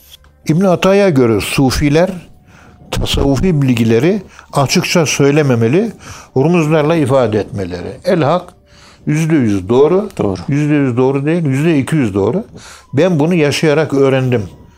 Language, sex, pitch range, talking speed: Turkish, male, 110-160 Hz, 95 wpm